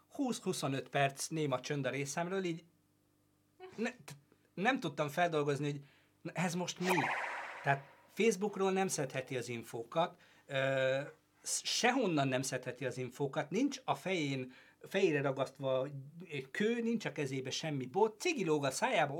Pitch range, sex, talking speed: 130-170 Hz, male, 125 wpm